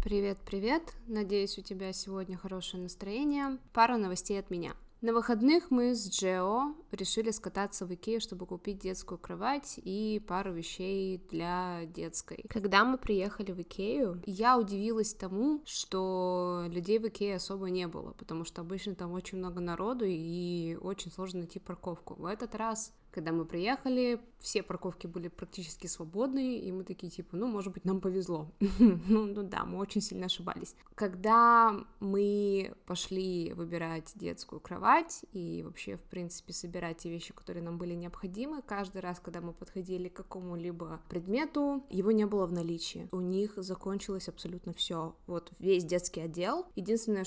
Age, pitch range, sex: 20-39, 180-220 Hz, female